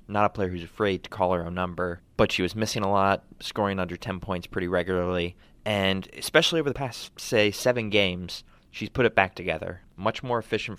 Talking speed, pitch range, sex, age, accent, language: 210 wpm, 90-105 Hz, male, 20-39, American, English